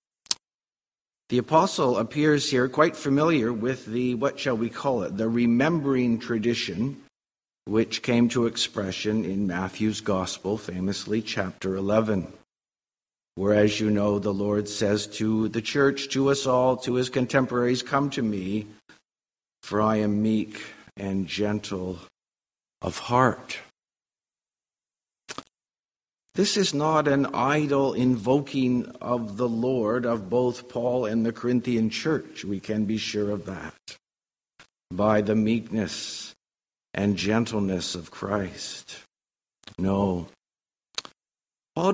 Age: 50-69